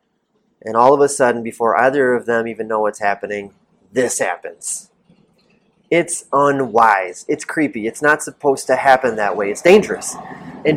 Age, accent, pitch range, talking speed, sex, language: 30-49, American, 130-175 Hz, 160 wpm, male, English